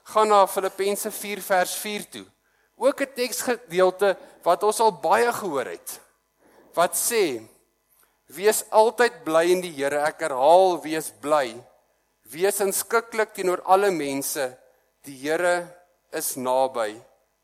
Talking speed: 130 wpm